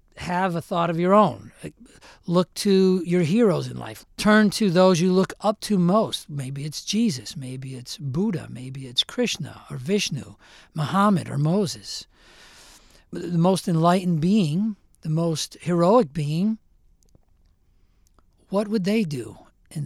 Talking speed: 140 wpm